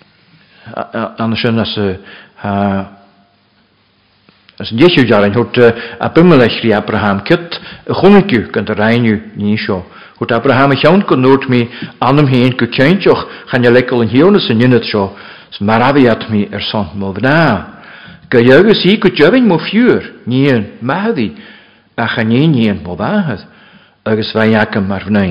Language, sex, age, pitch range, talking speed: English, male, 60-79, 105-145 Hz, 100 wpm